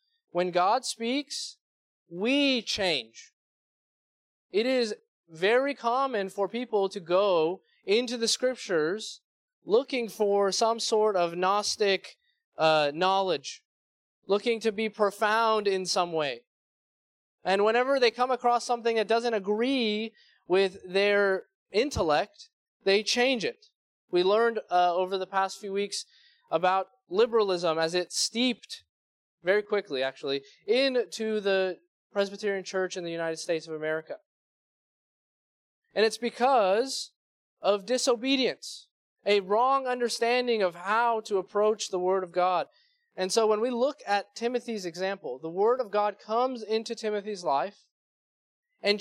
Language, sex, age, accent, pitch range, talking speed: English, male, 20-39, American, 190-245 Hz, 130 wpm